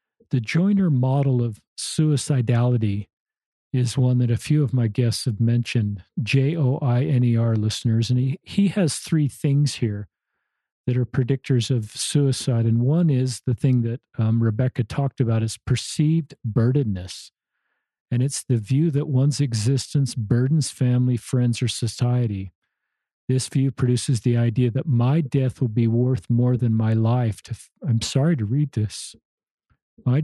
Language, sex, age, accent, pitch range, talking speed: English, male, 50-69, American, 115-135 Hz, 150 wpm